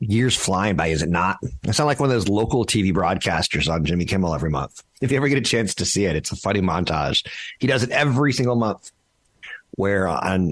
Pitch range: 90-120 Hz